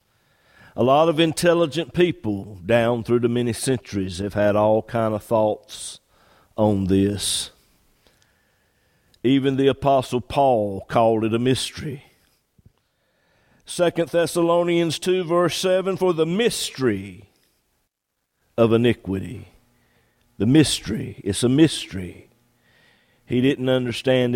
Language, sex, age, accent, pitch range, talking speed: English, male, 50-69, American, 110-140 Hz, 110 wpm